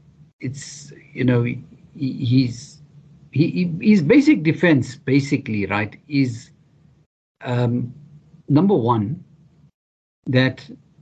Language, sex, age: English, male, 50-69